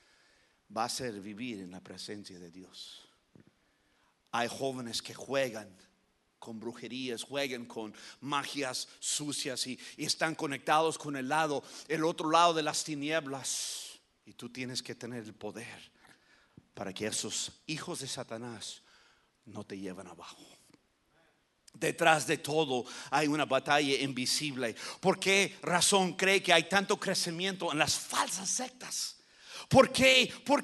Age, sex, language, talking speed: 50-69, male, English, 140 wpm